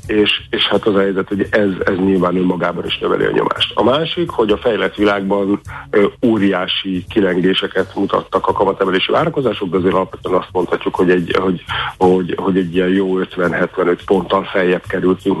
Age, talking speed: 50-69, 170 wpm